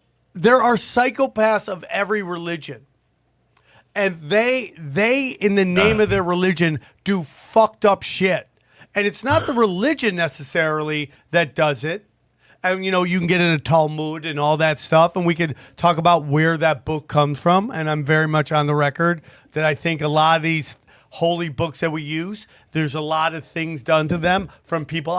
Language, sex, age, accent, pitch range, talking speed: English, male, 40-59, American, 155-220 Hz, 195 wpm